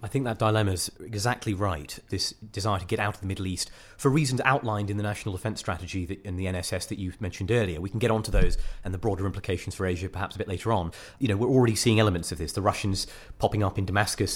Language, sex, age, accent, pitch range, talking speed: English, male, 30-49, British, 95-120 Hz, 265 wpm